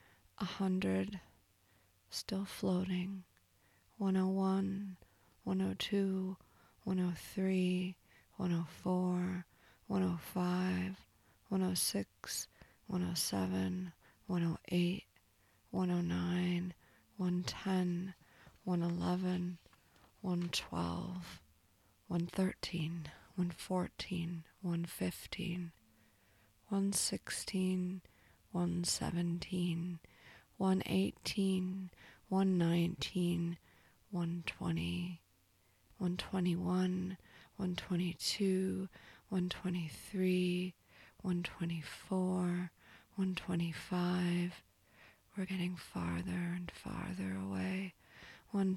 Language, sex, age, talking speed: English, female, 20-39, 60 wpm